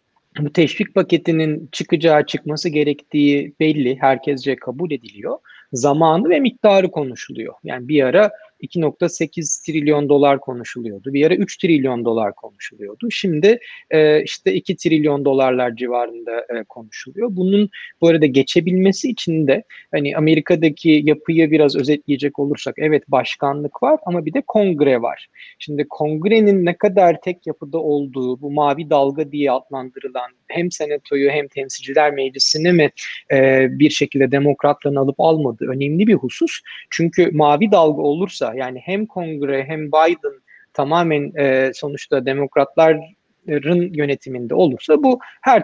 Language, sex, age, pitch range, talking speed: Turkish, male, 30-49, 140-175 Hz, 130 wpm